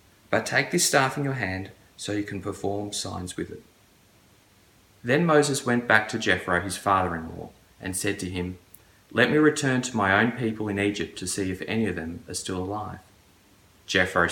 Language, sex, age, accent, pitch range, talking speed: English, male, 20-39, Australian, 90-110 Hz, 190 wpm